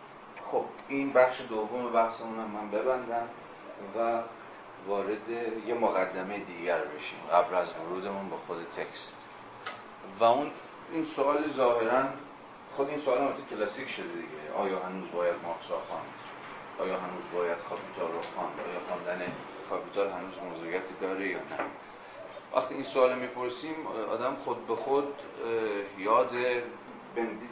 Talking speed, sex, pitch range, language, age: 135 wpm, male, 100-125 Hz, Persian, 40-59